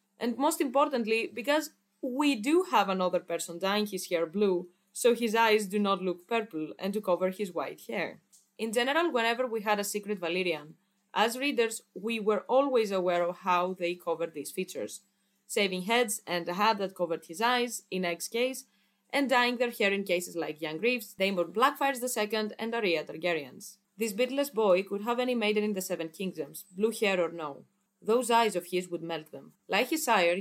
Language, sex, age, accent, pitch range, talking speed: English, female, 20-39, Spanish, 180-230 Hz, 195 wpm